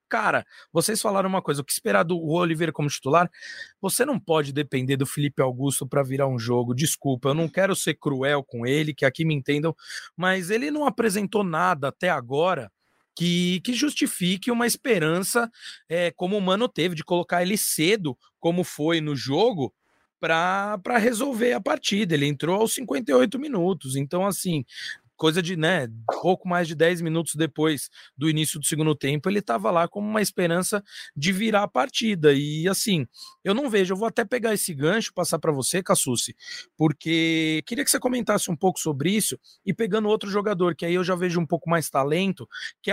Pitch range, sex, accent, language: 160-220 Hz, male, Brazilian, Portuguese